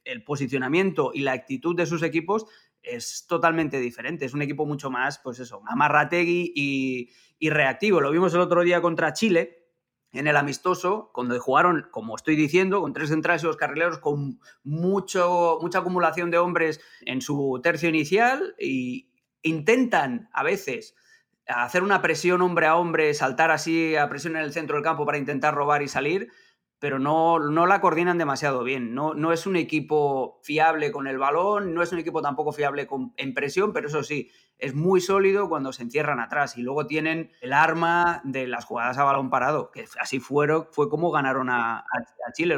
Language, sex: Spanish, male